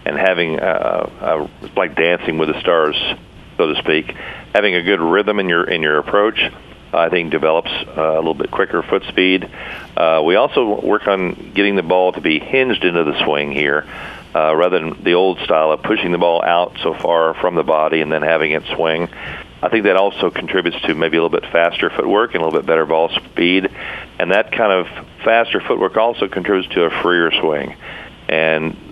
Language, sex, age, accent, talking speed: English, male, 50-69, American, 205 wpm